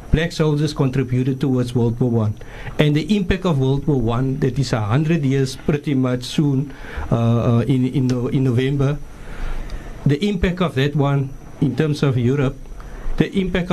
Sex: male